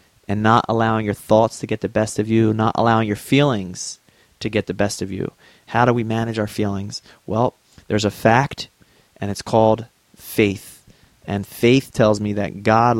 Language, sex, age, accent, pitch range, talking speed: English, male, 30-49, American, 110-130 Hz, 190 wpm